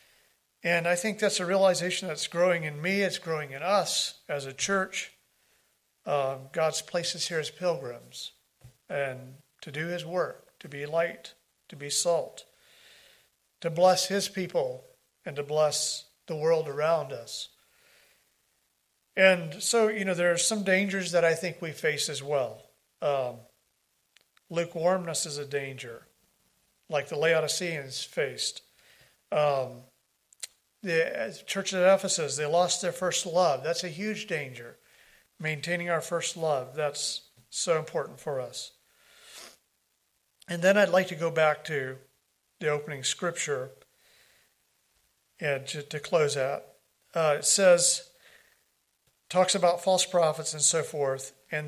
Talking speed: 140 wpm